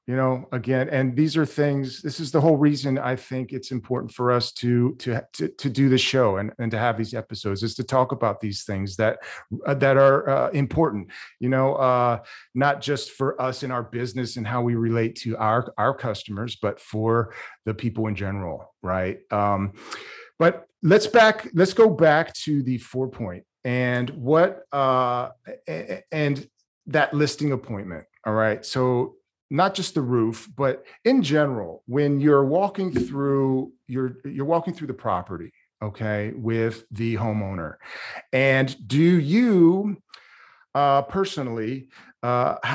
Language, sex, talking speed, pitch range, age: English, male, 165 wpm, 115-140 Hz, 40-59